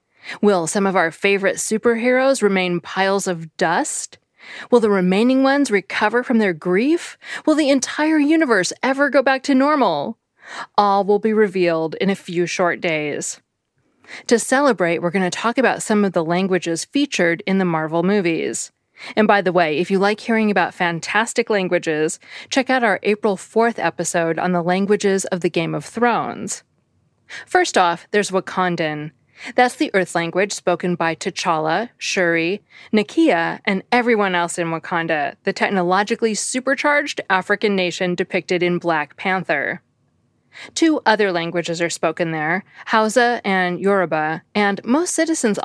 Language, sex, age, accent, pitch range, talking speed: English, female, 20-39, American, 175-230 Hz, 150 wpm